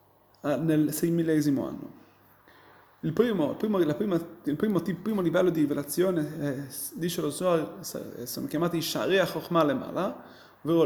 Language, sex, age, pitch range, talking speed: Italian, male, 30-49, 150-205 Hz, 120 wpm